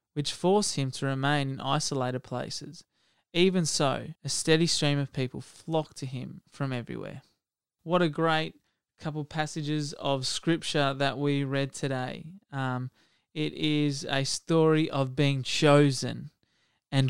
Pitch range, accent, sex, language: 130-155 Hz, Australian, male, English